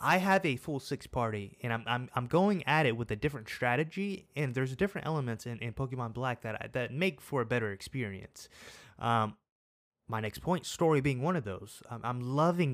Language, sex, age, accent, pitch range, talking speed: English, male, 20-39, American, 115-145 Hz, 205 wpm